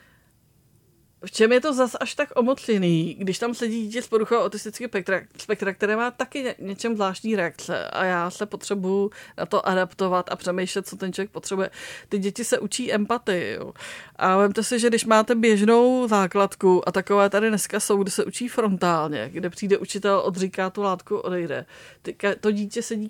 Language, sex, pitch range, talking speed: Czech, female, 185-225 Hz, 180 wpm